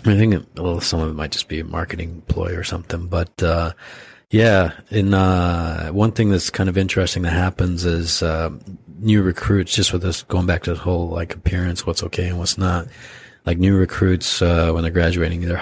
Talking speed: 210 wpm